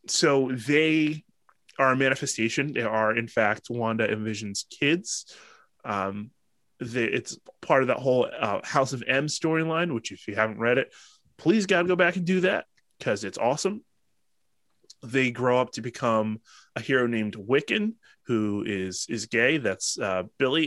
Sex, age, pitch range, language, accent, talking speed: male, 20-39, 110-135 Hz, English, American, 165 wpm